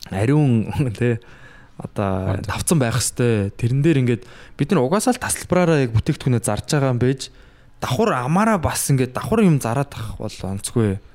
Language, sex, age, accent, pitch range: Korean, male, 20-39, native, 110-135 Hz